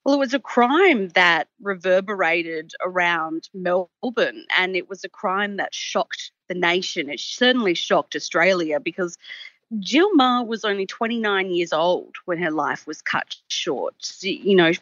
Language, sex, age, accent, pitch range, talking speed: English, female, 30-49, Australian, 180-245 Hz, 155 wpm